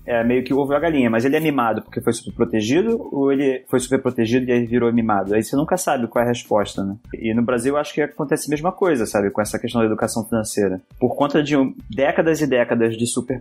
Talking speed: 255 wpm